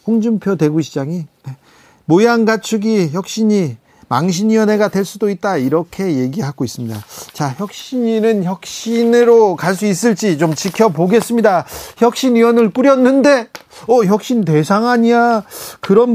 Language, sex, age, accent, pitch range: Korean, male, 40-59, native, 150-210 Hz